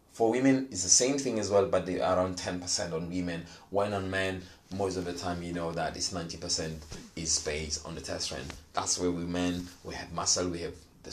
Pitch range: 90-115 Hz